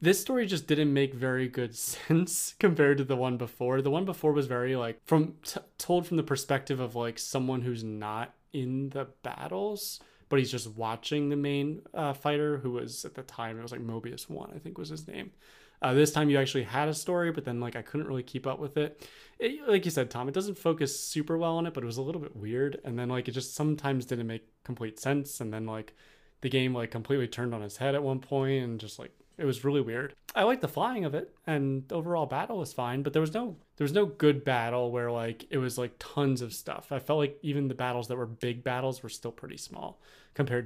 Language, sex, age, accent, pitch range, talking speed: English, male, 20-39, American, 125-155 Hz, 245 wpm